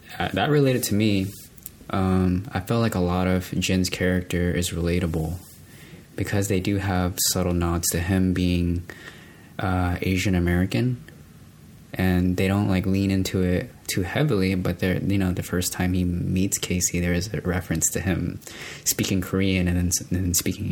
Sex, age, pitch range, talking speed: male, 20-39, 90-105 Hz, 170 wpm